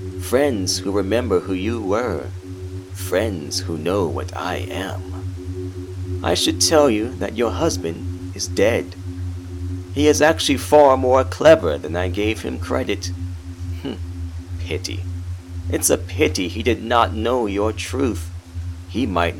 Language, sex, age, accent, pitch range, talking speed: English, male, 40-59, American, 90-100 Hz, 140 wpm